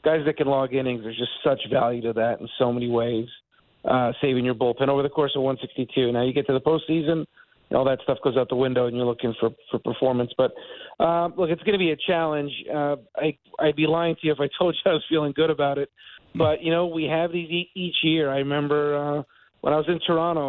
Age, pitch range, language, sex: 40-59, 135-160 Hz, English, male